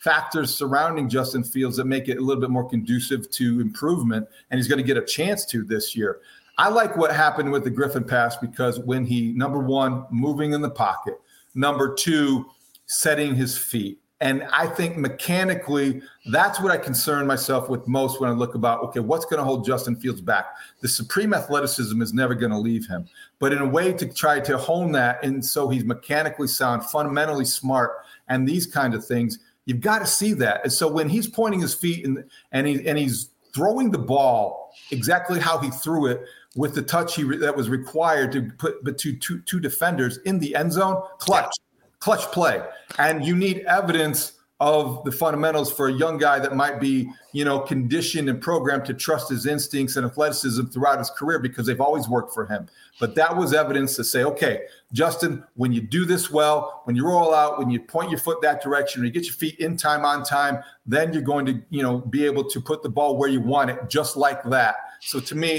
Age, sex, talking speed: 40-59, male, 215 wpm